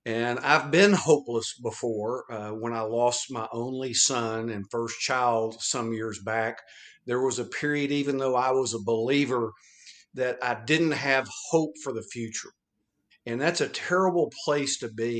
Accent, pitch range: American, 115-145 Hz